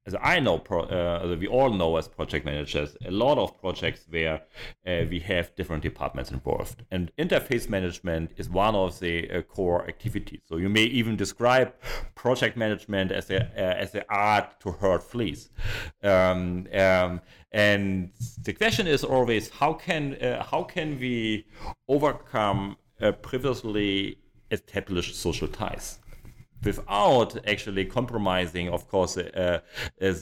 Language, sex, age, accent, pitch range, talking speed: English, male, 40-59, German, 85-110 Hz, 135 wpm